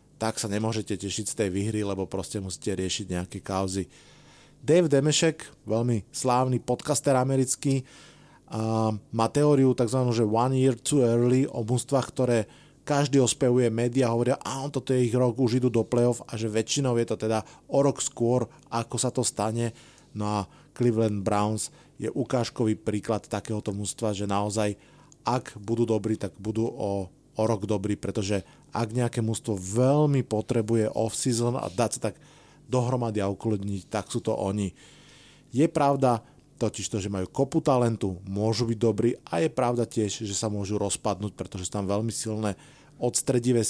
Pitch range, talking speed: 105-130 Hz, 165 wpm